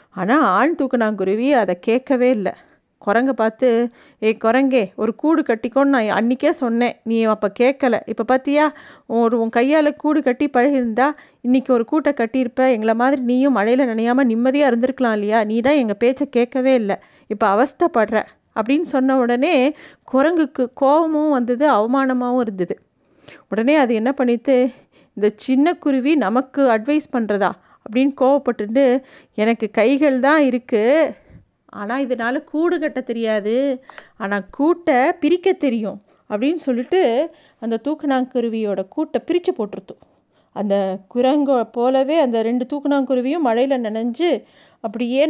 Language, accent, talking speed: Tamil, native, 130 wpm